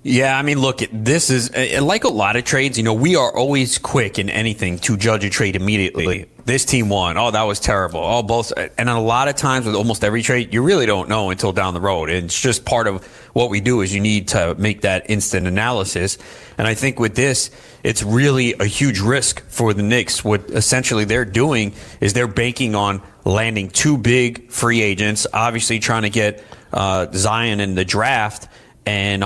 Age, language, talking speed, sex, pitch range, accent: 30-49, English, 205 wpm, male, 95-120 Hz, American